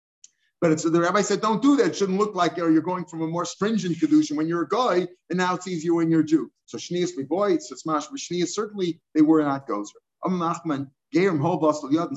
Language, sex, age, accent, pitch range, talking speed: English, male, 50-69, American, 150-180 Hz, 205 wpm